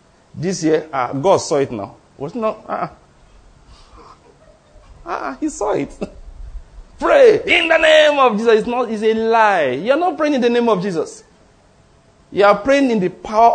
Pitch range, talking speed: 190-255 Hz, 170 wpm